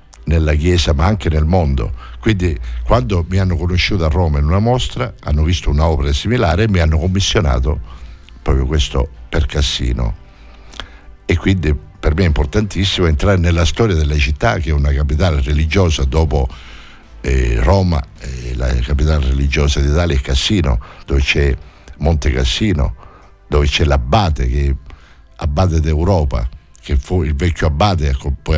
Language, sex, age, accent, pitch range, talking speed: Italian, male, 60-79, native, 70-95 Hz, 150 wpm